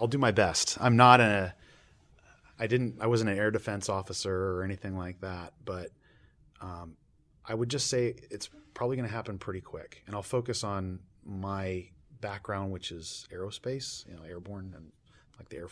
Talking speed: 185 wpm